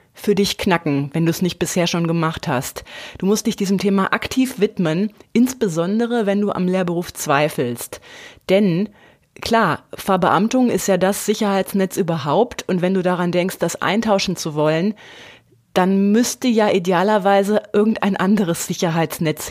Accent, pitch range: German, 180-215 Hz